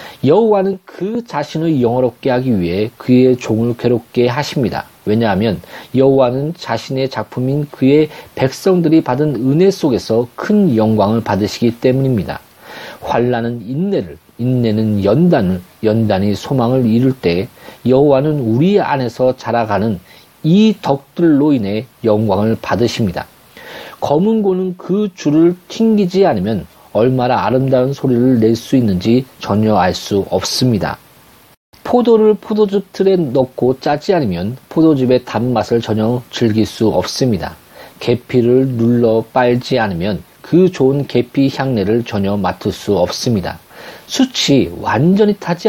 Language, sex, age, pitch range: Korean, male, 40-59, 115-155 Hz